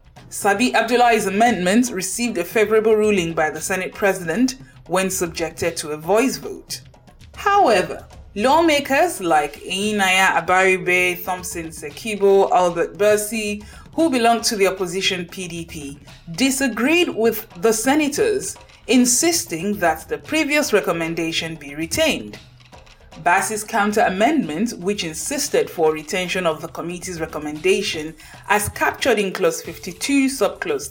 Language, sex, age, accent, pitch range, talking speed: English, female, 20-39, Nigerian, 170-245 Hz, 115 wpm